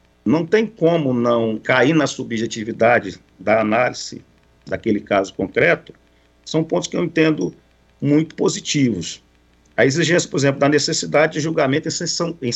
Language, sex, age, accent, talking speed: Portuguese, male, 50-69, Brazilian, 135 wpm